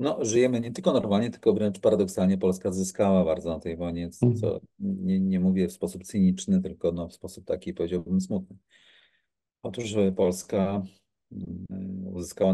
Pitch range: 90-110 Hz